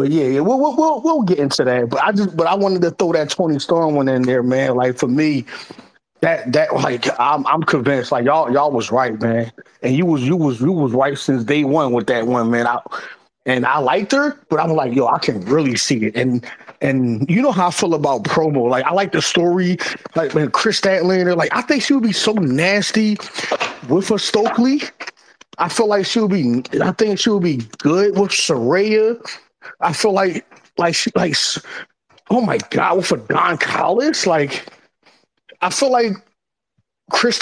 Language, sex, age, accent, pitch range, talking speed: English, male, 20-39, American, 135-200 Hz, 210 wpm